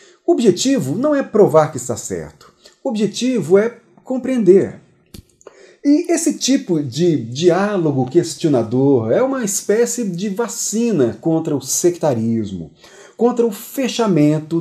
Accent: Brazilian